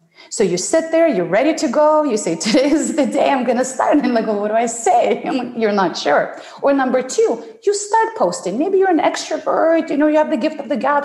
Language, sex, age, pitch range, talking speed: English, female, 30-49, 205-310 Hz, 270 wpm